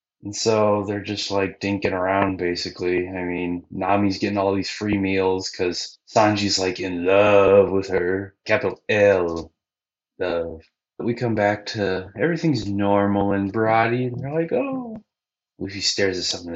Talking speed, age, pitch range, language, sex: 165 wpm, 20-39, 90-110 Hz, English, male